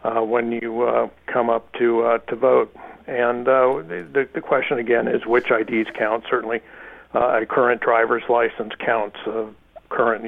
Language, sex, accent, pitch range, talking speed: English, male, American, 115-125 Hz, 175 wpm